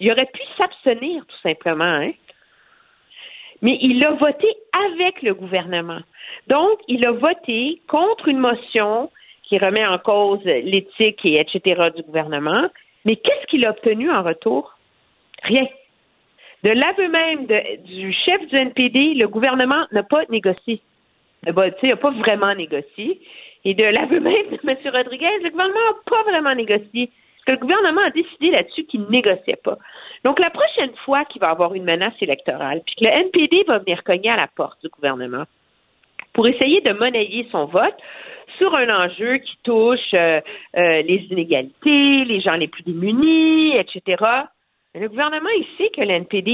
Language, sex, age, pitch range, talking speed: French, female, 50-69, 195-315 Hz, 170 wpm